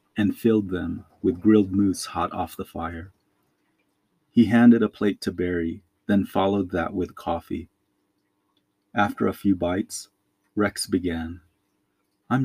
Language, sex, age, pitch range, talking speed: English, male, 30-49, 90-105 Hz, 135 wpm